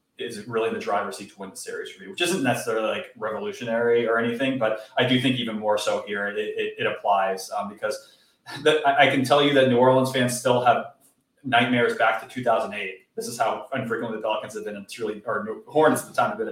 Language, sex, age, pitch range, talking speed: English, male, 30-49, 110-135 Hz, 240 wpm